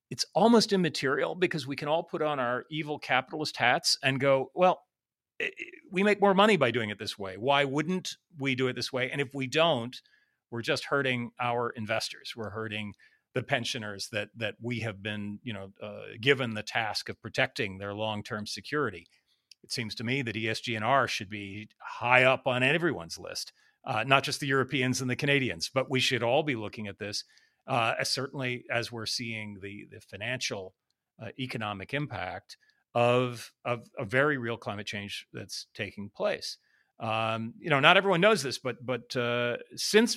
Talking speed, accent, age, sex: 185 wpm, American, 40-59, male